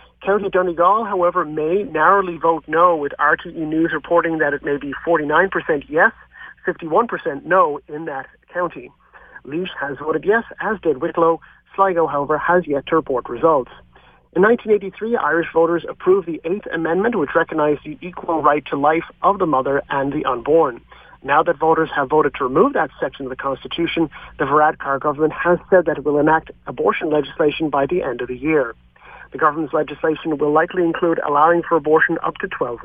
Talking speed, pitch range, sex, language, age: 180 wpm, 150-180 Hz, male, English, 40-59